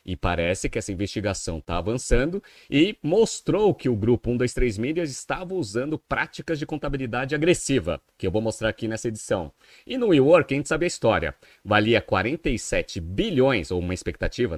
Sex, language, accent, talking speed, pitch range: male, Portuguese, Brazilian, 170 wpm, 105-145 Hz